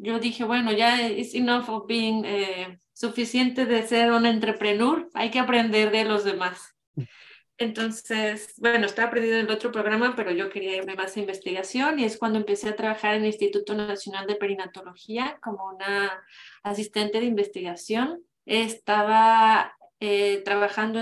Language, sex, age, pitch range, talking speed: English, female, 20-39, 205-225 Hz, 150 wpm